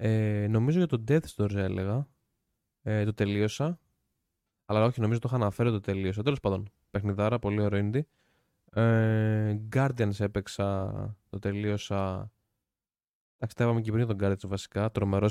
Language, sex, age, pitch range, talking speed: Greek, male, 20-39, 100-115 Hz, 145 wpm